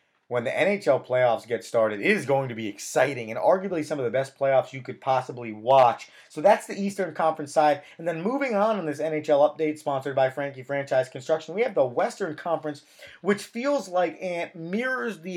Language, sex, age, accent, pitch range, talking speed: English, male, 30-49, American, 140-185 Hz, 205 wpm